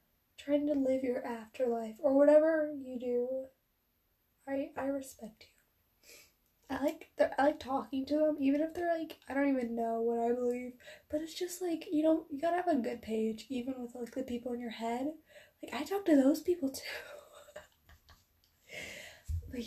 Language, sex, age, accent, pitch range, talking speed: English, female, 10-29, American, 245-300 Hz, 185 wpm